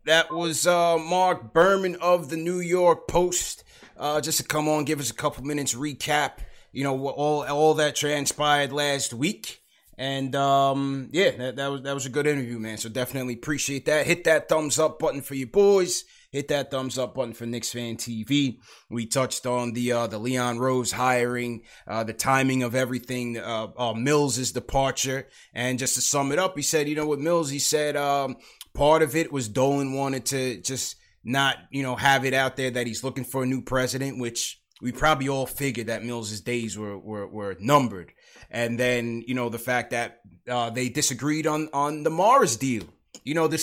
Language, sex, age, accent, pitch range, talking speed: English, male, 30-49, American, 125-150 Hz, 200 wpm